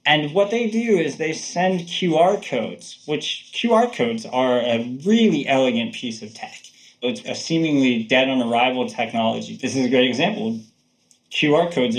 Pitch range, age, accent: 115-180 Hz, 20-39, American